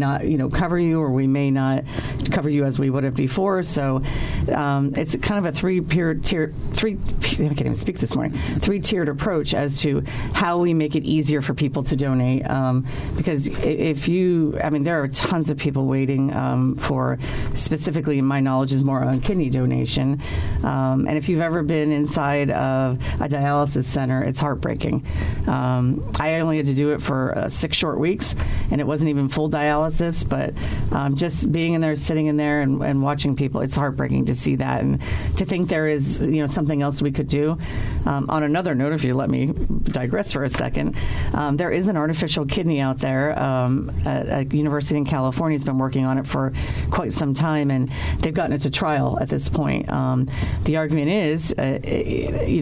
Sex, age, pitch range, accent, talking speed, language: female, 40-59, 130-155 Hz, American, 205 wpm, English